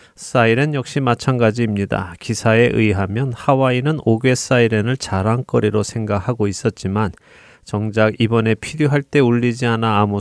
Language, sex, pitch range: Korean, male, 105-130 Hz